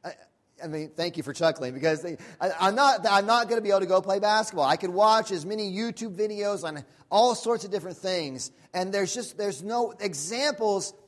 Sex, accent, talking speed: male, American, 215 wpm